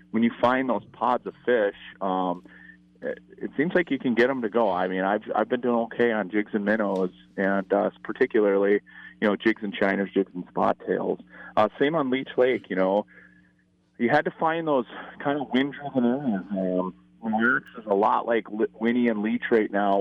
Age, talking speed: 30-49, 200 wpm